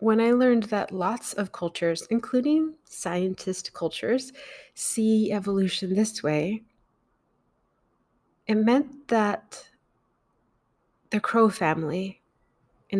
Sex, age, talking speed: female, 30-49, 95 wpm